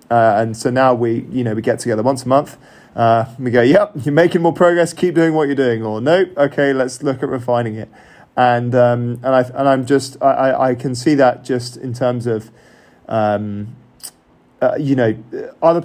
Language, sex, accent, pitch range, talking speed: English, male, British, 115-135 Hz, 215 wpm